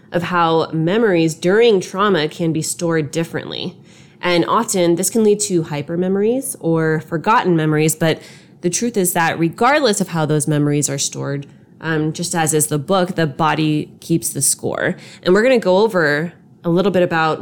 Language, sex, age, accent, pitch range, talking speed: English, female, 20-39, American, 160-200 Hz, 180 wpm